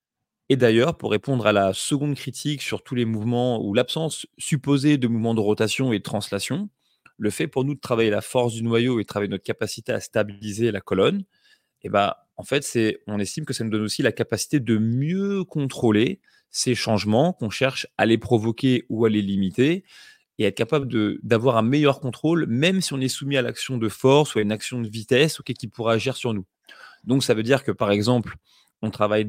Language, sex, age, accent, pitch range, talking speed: French, male, 30-49, French, 105-135 Hz, 220 wpm